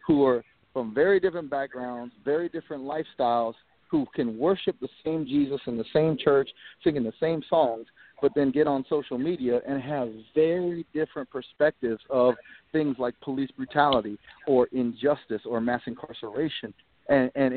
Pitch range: 125-160 Hz